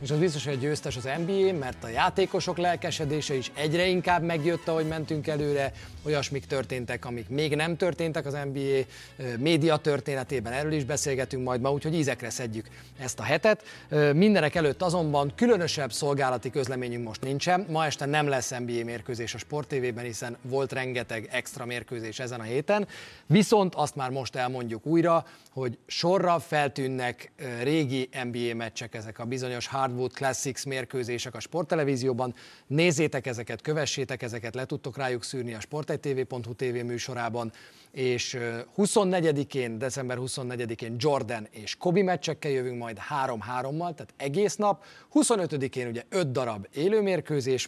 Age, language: 30-49, Hungarian